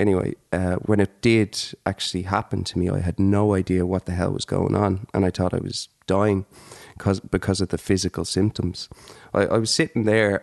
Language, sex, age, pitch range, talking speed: English, male, 20-39, 95-110 Hz, 200 wpm